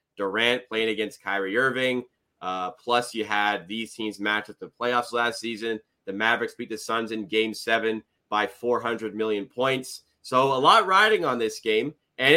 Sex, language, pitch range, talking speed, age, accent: male, English, 110-145 Hz, 180 wpm, 30-49, American